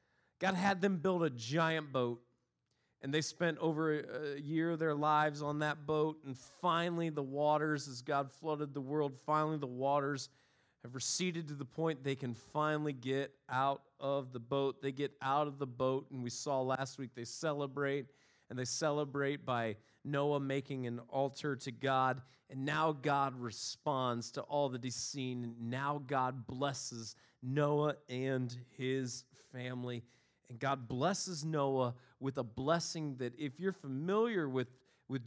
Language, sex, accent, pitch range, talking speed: English, male, American, 125-150 Hz, 165 wpm